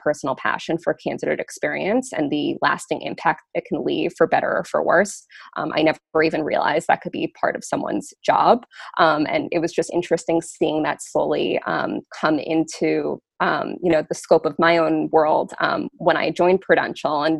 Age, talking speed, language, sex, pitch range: 20-39, 195 wpm, English, female, 160-185 Hz